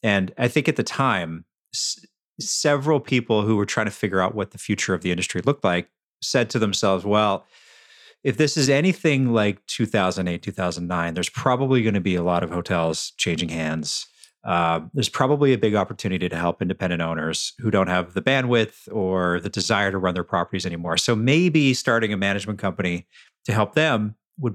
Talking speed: 185 wpm